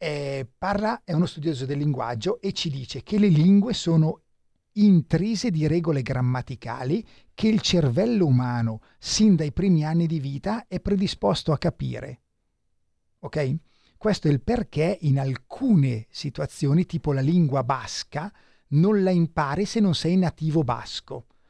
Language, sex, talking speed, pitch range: Italian, male, 140 wpm, 130-175 Hz